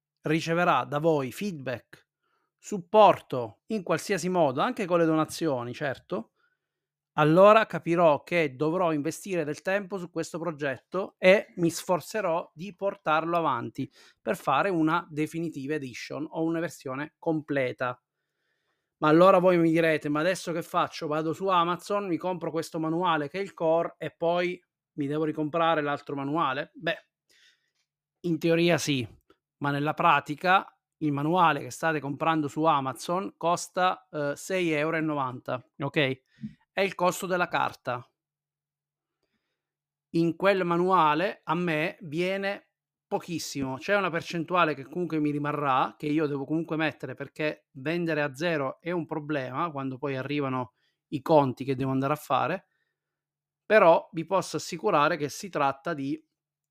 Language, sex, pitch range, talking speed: Italian, male, 145-175 Hz, 140 wpm